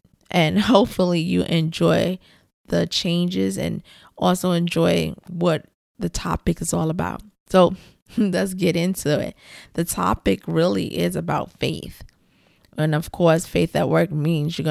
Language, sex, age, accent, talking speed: English, female, 20-39, American, 140 wpm